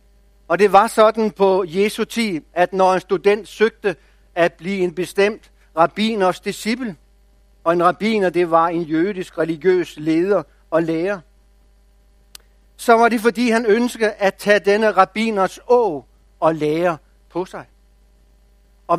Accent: Danish